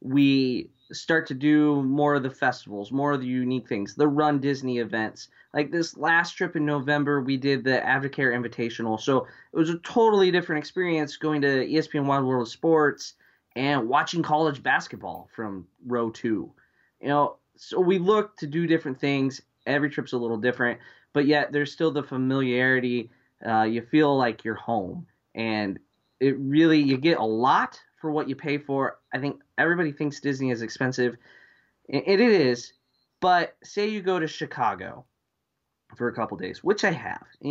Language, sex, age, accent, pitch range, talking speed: English, male, 20-39, American, 125-155 Hz, 175 wpm